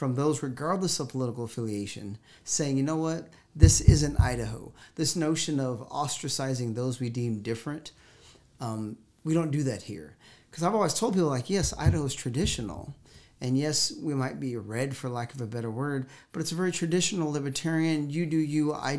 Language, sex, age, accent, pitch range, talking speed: English, male, 40-59, American, 125-155 Hz, 185 wpm